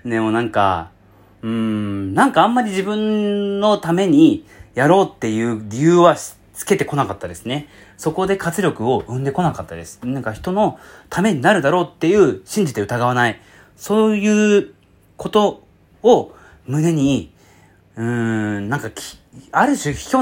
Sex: male